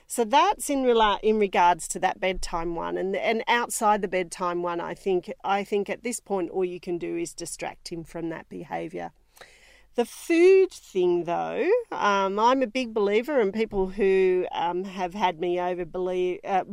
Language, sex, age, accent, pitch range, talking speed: English, female, 40-59, Australian, 180-240 Hz, 185 wpm